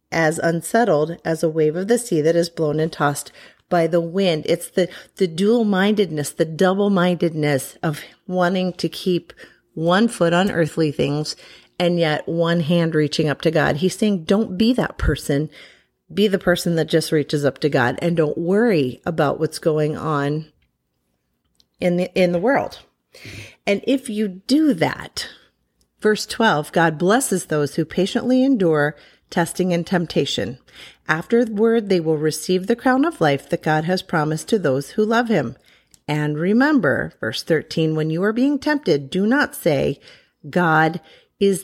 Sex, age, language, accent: female, 40-59, English, American